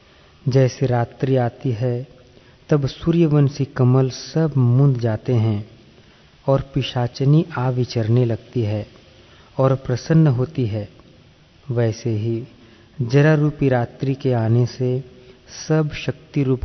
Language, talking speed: Hindi, 110 wpm